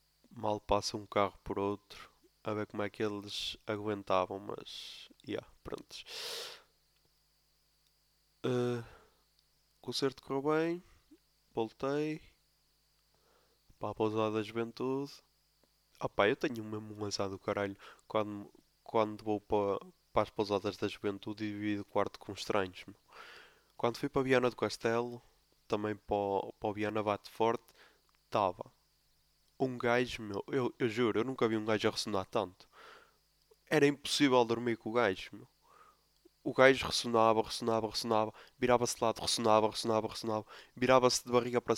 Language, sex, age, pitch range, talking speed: English, male, 20-39, 105-120 Hz, 145 wpm